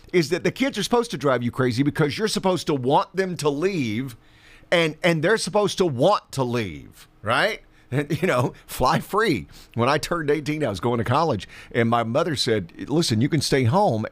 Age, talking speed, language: 50-69, 215 wpm, English